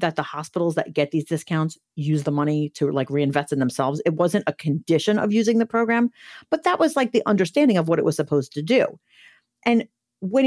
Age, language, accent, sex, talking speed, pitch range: 40-59, English, American, female, 220 wpm, 150-205 Hz